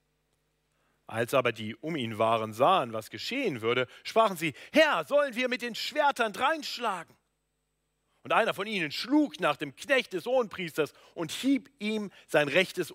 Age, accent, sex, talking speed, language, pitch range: 40-59, German, male, 160 wpm, German, 120-195 Hz